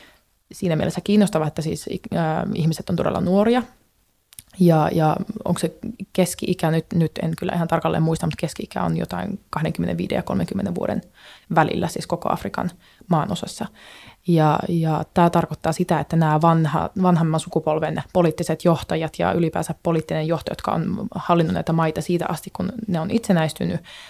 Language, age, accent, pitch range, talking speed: Finnish, 20-39, native, 160-185 Hz, 150 wpm